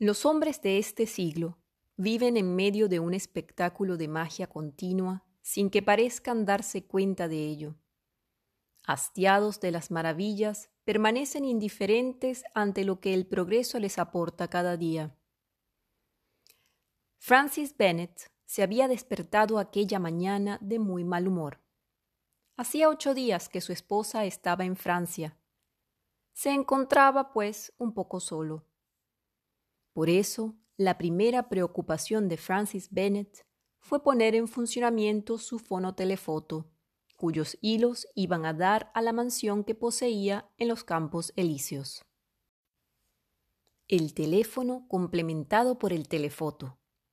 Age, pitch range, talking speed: 30-49, 170-225 Hz, 120 wpm